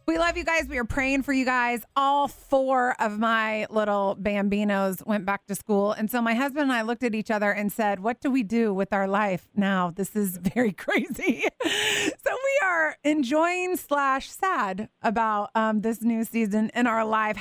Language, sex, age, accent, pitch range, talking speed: English, female, 30-49, American, 200-260 Hz, 200 wpm